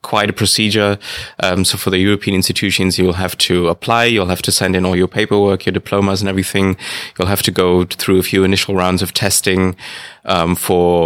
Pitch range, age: 90-105 Hz, 20-39